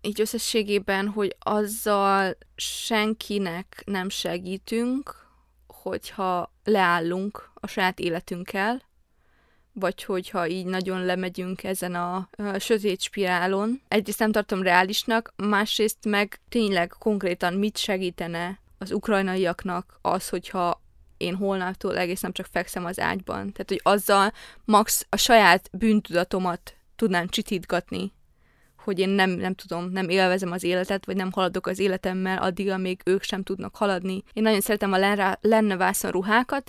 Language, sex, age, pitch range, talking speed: Hungarian, female, 20-39, 185-210 Hz, 125 wpm